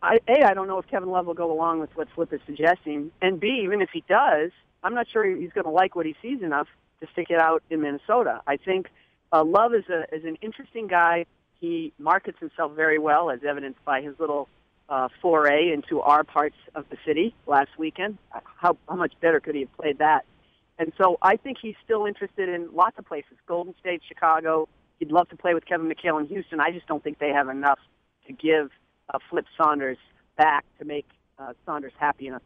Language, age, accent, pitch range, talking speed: English, 50-69, American, 150-205 Hz, 220 wpm